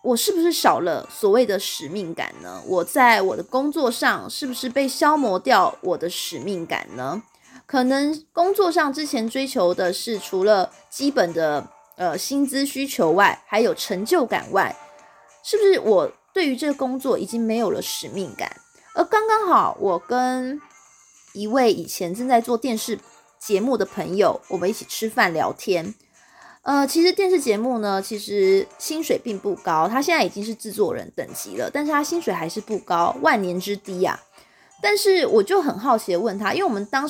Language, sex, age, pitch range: Chinese, female, 20-39, 205-335 Hz